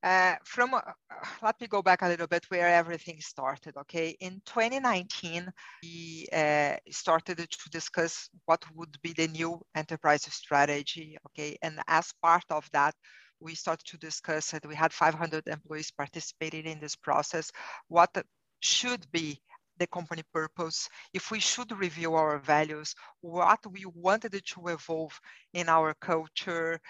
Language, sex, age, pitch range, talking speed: English, female, 50-69, 160-190 Hz, 150 wpm